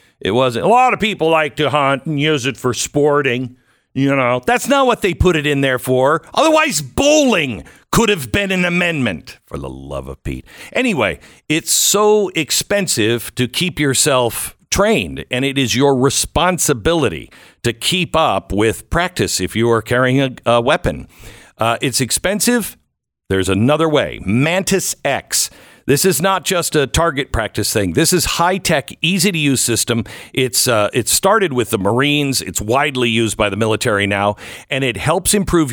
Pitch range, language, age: 120-170 Hz, English, 50-69